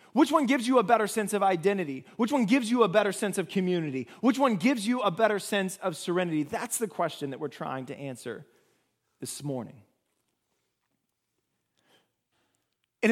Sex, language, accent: male, English, American